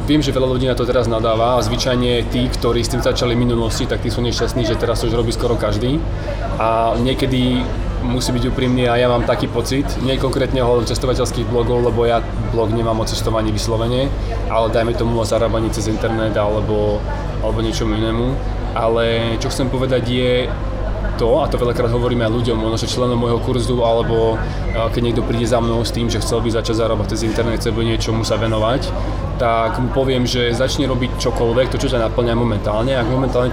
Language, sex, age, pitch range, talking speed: Slovak, male, 20-39, 110-125 Hz, 195 wpm